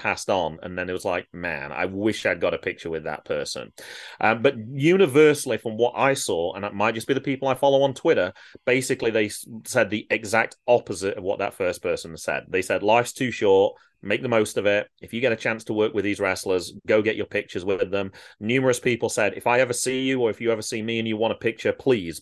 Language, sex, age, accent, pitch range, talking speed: English, male, 30-49, British, 100-145 Hz, 250 wpm